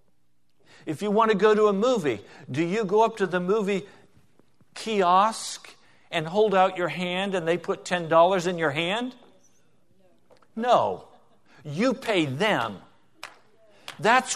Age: 50-69